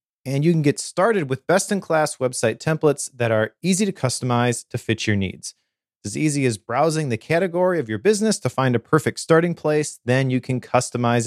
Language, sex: English, male